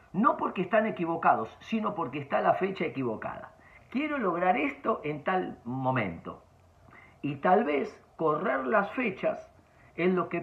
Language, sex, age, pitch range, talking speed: Spanish, male, 50-69, 130-195 Hz, 145 wpm